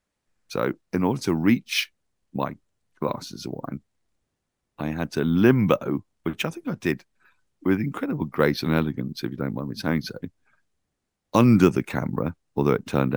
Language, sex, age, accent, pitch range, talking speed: English, male, 50-69, British, 70-85 Hz, 165 wpm